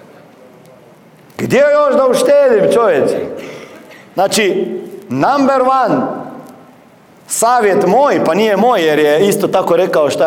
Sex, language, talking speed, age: male, Croatian, 110 wpm, 40-59